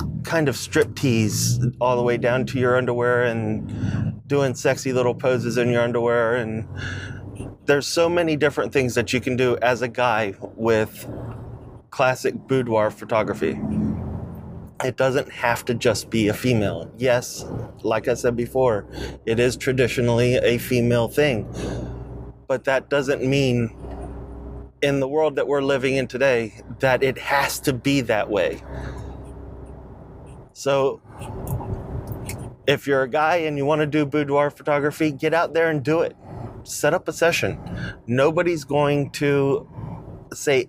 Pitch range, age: 115-135 Hz, 30-49